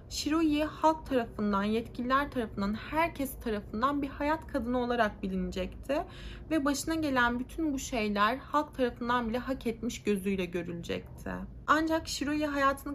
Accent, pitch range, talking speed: native, 235-305 Hz, 130 wpm